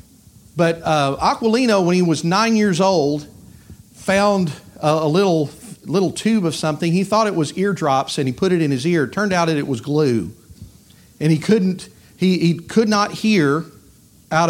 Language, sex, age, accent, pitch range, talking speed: English, male, 50-69, American, 130-170 Hz, 180 wpm